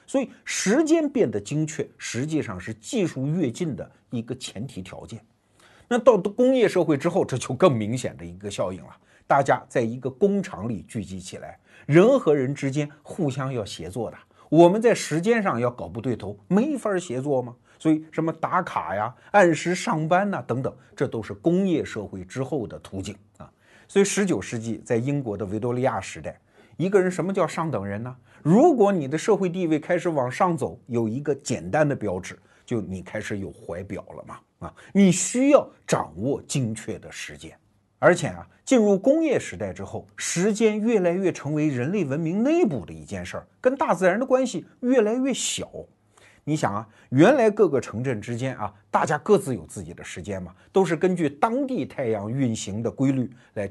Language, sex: Chinese, male